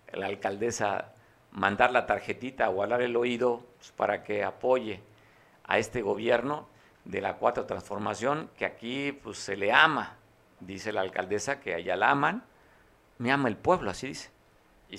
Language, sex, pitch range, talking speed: Spanish, male, 100-125 Hz, 160 wpm